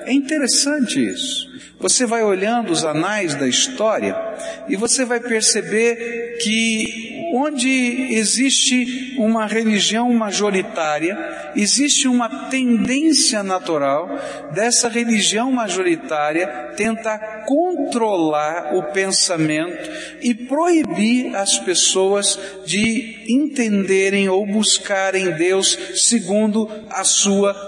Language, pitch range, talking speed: Portuguese, 195-260 Hz, 95 wpm